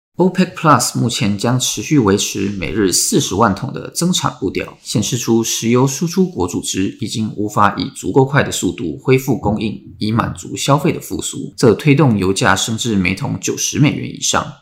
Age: 20-39